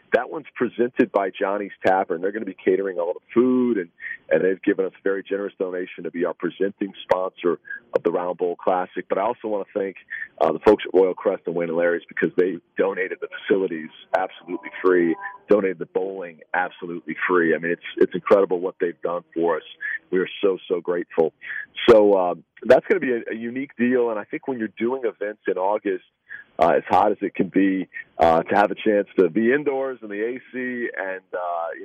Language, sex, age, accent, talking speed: English, male, 40-59, American, 220 wpm